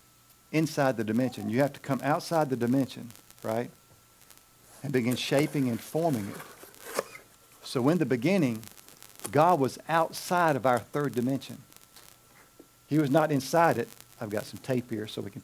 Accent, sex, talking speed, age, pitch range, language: American, male, 160 wpm, 50-69, 110-145 Hz, English